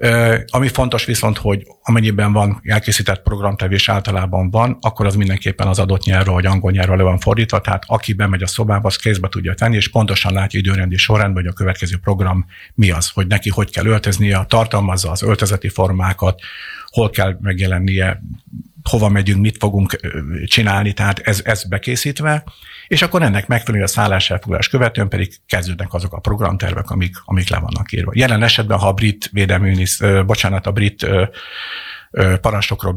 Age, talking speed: 50-69, 165 wpm